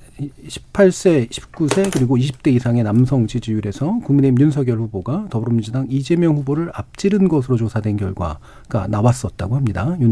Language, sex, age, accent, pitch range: Korean, male, 40-59, native, 115-155 Hz